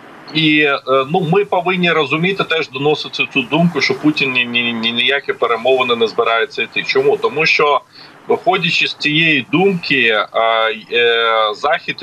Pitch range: 120-185 Hz